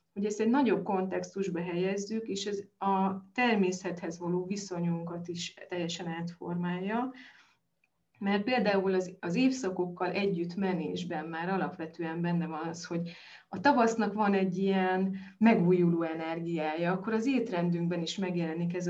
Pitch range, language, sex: 175-210 Hz, Hungarian, female